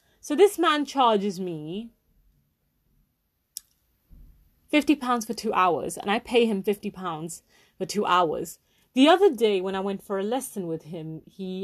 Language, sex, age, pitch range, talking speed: English, female, 30-49, 175-240 Hz, 160 wpm